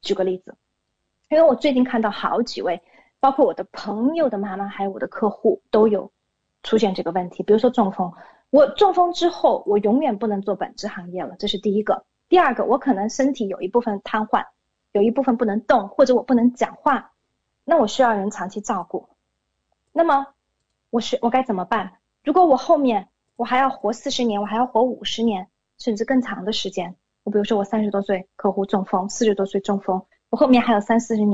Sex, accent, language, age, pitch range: female, Chinese, English, 20-39, 200-260 Hz